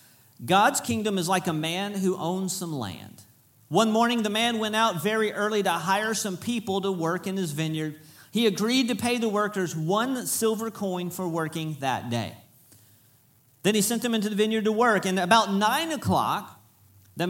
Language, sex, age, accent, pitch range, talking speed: English, male, 40-59, American, 160-225 Hz, 185 wpm